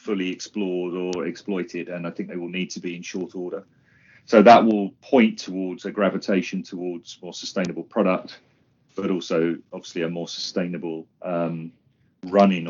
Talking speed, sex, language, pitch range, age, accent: 160 wpm, male, English, 90-105 Hz, 40-59, British